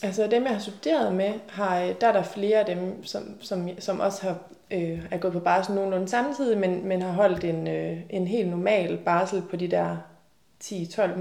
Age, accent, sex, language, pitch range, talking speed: 20-39, native, female, Danish, 175-220 Hz, 210 wpm